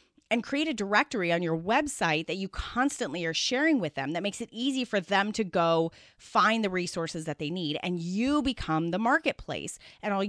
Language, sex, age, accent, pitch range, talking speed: English, female, 30-49, American, 170-230 Hz, 205 wpm